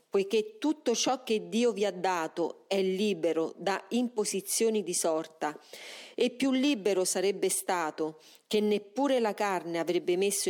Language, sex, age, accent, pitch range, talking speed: Italian, female, 40-59, native, 180-240 Hz, 150 wpm